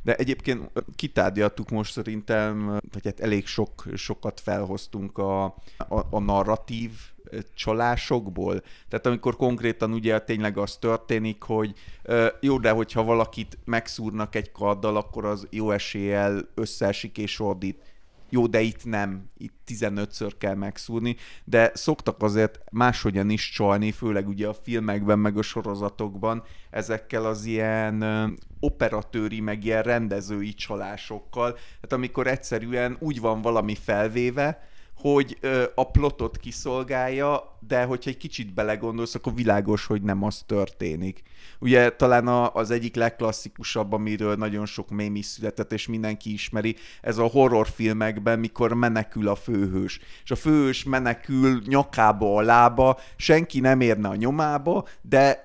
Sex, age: male, 30-49